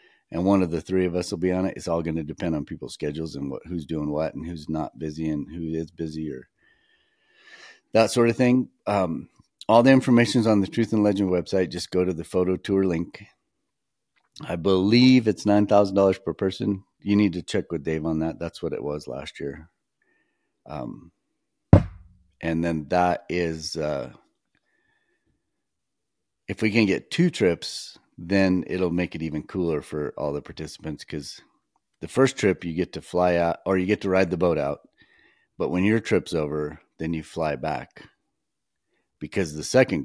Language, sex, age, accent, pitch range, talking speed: English, male, 40-59, American, 80-100 Hz, 190 wpm